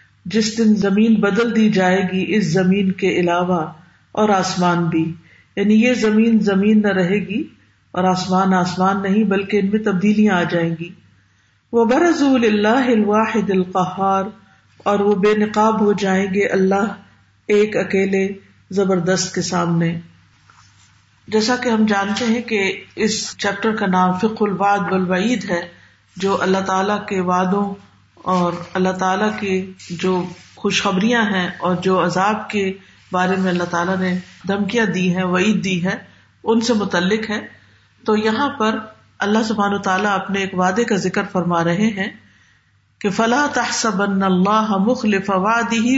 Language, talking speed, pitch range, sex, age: Urdu, 150 wpm, 180-215 Hz, female, 50-69